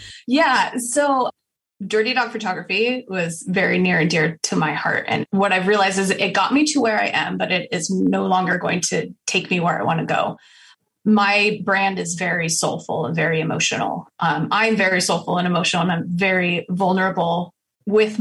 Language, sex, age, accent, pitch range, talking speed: English, female, 20-39, American, 170-220 Hz, 190 wpm